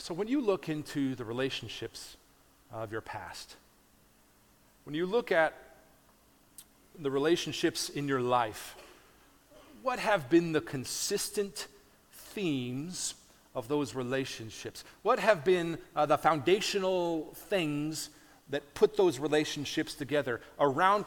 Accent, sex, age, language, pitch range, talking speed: American, male, 40-59, English, 140-195 Hz, 115 wpm